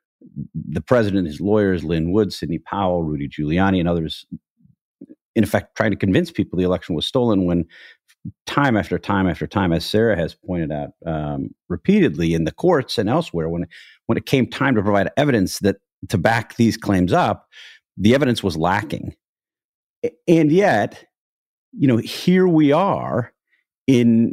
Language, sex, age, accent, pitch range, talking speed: English, male, 50-69, American, 90-135 Hz, 165 wpm